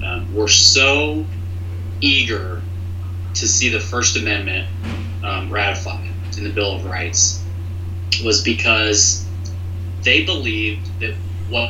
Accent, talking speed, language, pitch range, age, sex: American, 115 wpm, English, 90-95 Hz, 20-39, male